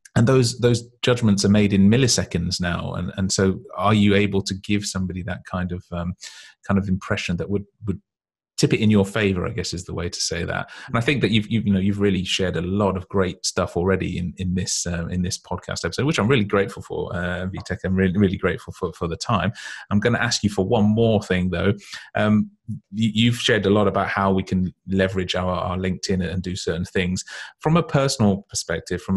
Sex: male